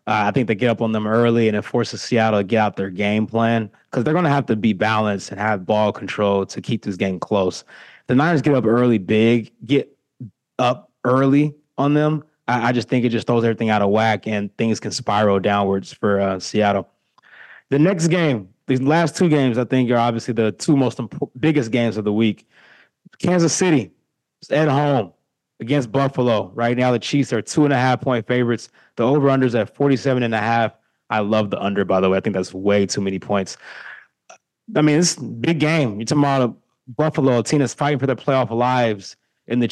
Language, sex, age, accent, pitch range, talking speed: English, male, 20-39, American, 110-135 Hz, 210 wpm